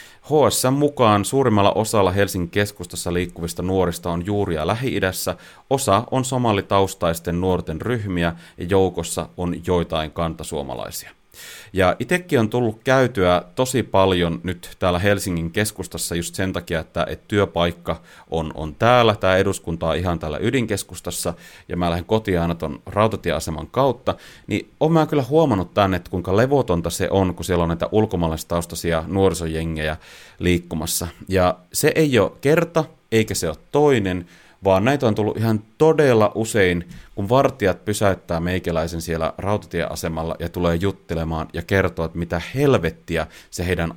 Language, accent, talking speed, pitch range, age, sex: Finnish, native, 140 wpm, 85-105 Hz, 30-49, male